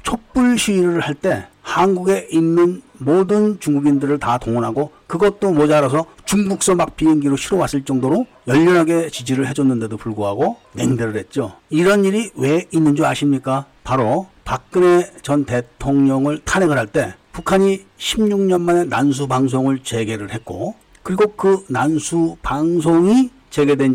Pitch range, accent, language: 135-185 Hz, native, Korean